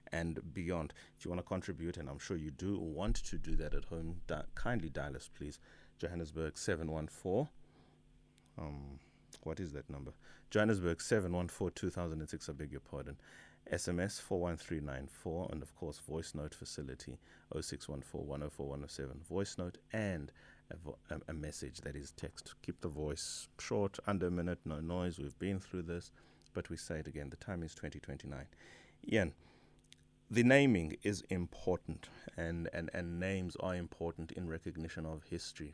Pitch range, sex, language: 75-85 Hz, male, English